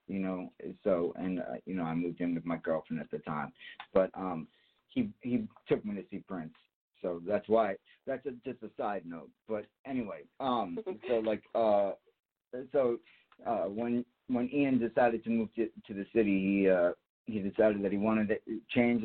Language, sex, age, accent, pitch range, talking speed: English, male, 50-69, American, 100-120 Hz, 190 wpm